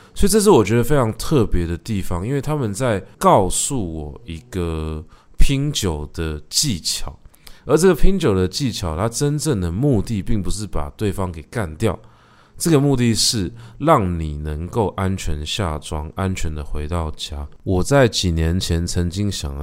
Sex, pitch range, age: male, 80-110 Hz, 20-39